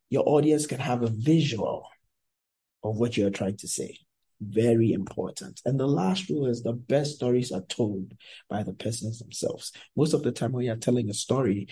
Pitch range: 115-145 Hz